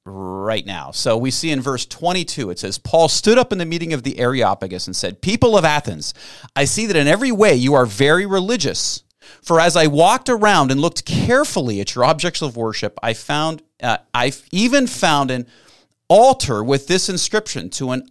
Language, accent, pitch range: English, American, 120-165 Hz